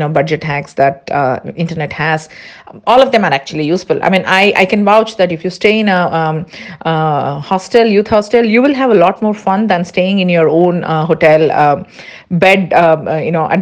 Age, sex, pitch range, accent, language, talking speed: 50-69, female, 165-225 Hz, Indian, English, 220 wpm